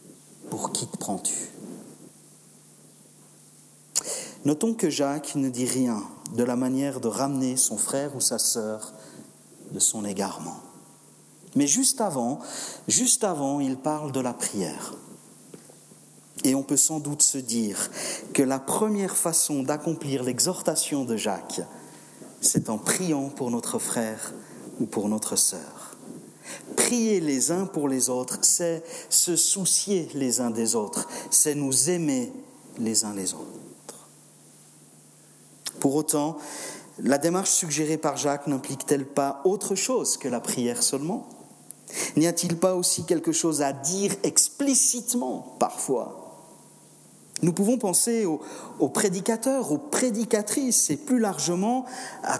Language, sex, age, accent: French, male, 50-69, French